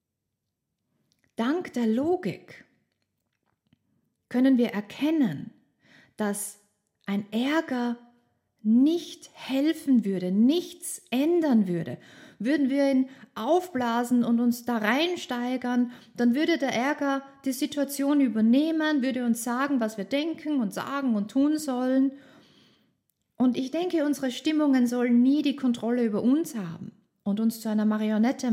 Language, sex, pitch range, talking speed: German, female, 210-280 Hz, 120 wpm